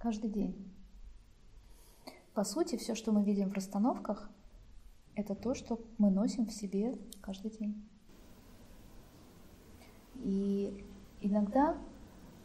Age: 20-39